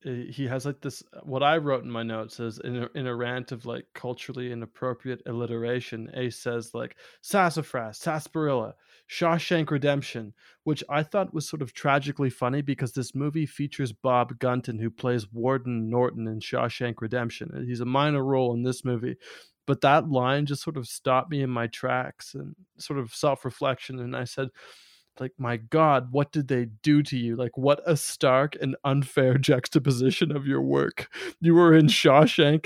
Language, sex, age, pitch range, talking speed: English, male, 20-39, 125-155 Hz, 180 wpm